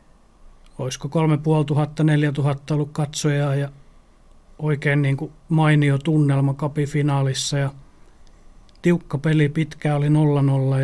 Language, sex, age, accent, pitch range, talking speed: Finnish, male, 30-49, native, 140-150 Hz, 95 wpm